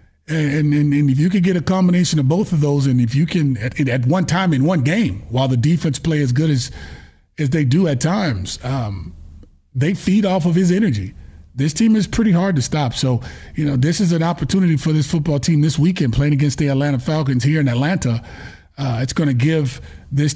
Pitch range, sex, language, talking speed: 125-155 Hz, male, English, 225 wpm